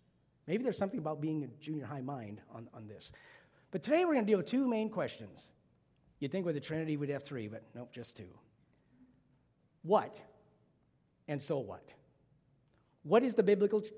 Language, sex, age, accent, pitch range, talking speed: English, male, 50-69, American, 135-165 Hz, 180 wpm